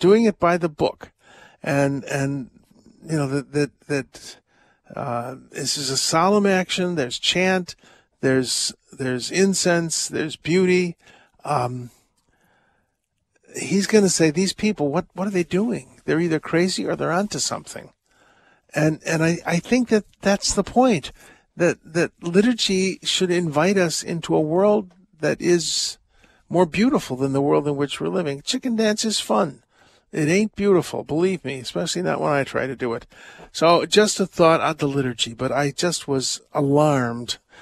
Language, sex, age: English, male, 50-69